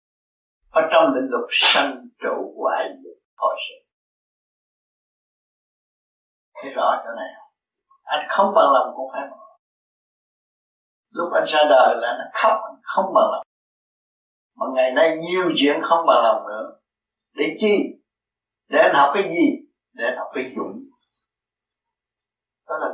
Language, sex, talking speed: Vietnamese, male, 135 wpm